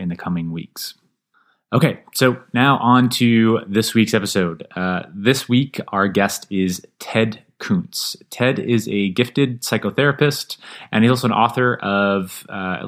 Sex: male